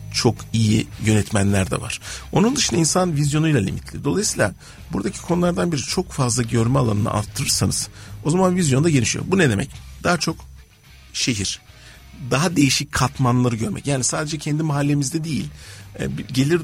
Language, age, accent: Turkish, 50-69, native